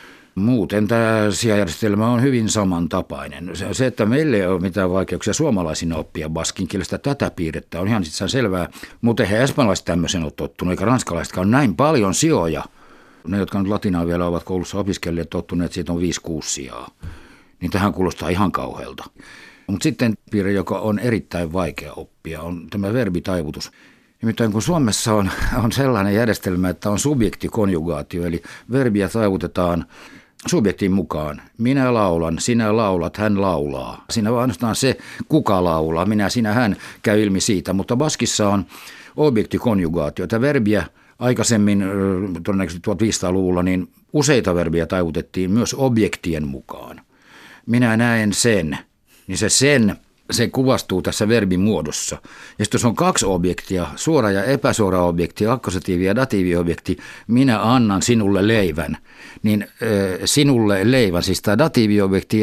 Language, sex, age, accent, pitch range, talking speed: Finnish, male, 60-79, native, 90-115 Hz, 140 wpm